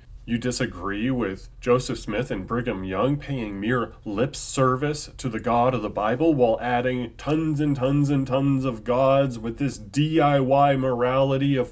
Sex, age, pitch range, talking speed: male, 30-49, 115-145 Hz, 165 wpm